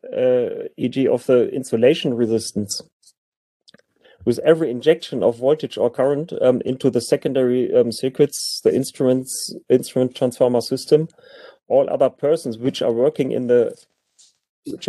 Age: 30-49